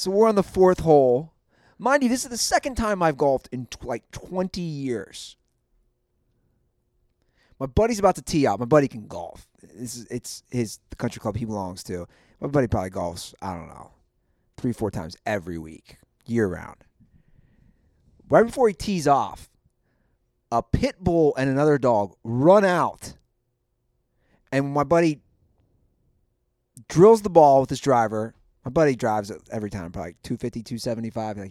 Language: English